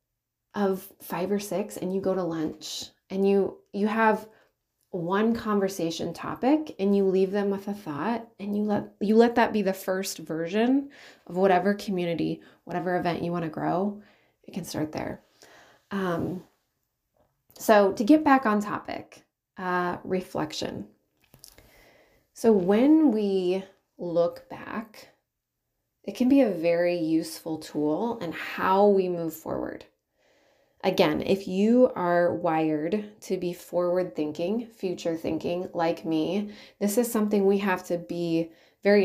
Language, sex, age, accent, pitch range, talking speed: English, female, 30-49, American, 170-210 Hz, 140 wpm